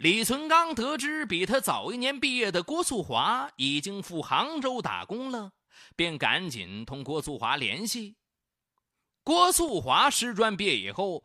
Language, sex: Chinese, male